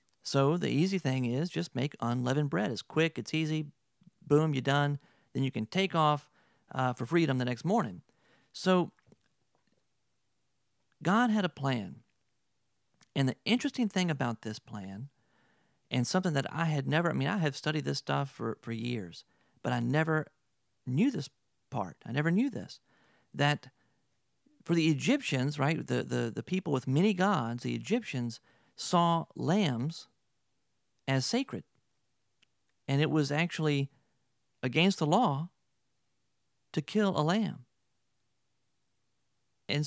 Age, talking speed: 40-59, 145 wpm